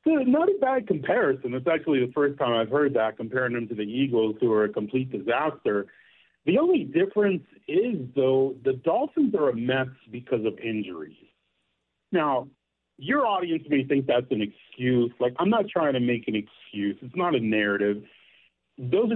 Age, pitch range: 50-69, 120-175 Hz